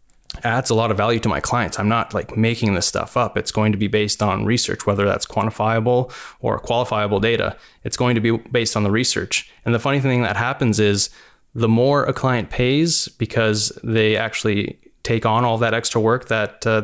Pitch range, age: 105-120 Hz, 20-39